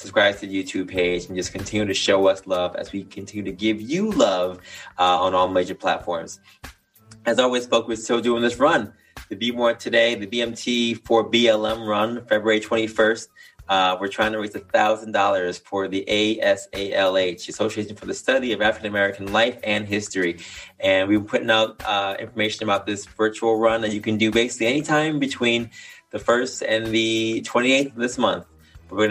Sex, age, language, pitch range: male, 20-39, English, 95-115 Hz